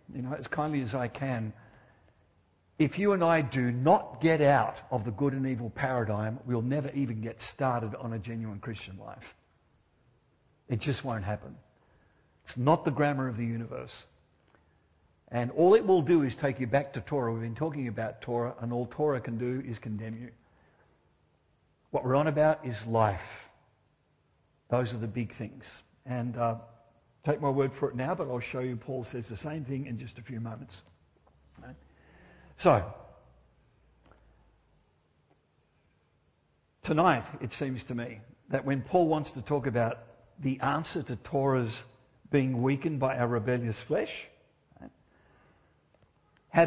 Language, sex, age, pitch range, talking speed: English, male, 60-79, 115-140 Hz, 160 wpm